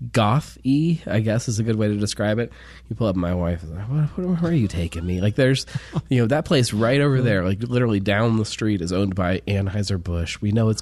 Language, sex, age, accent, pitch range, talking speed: English, male, 20-39, American, 85-110 Hz, 255 wpm